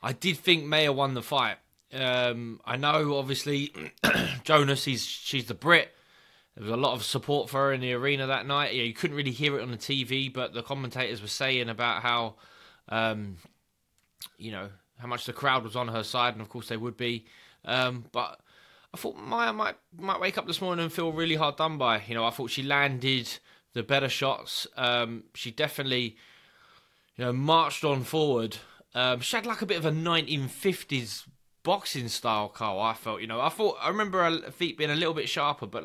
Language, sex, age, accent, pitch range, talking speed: English, male, 20-39, British, 125-150 Hz, 210 wpm